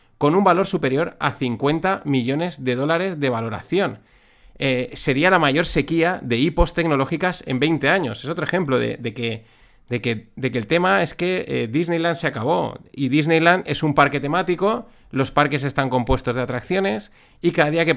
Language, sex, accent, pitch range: Spanish, male, Spanish, 125-170 Hz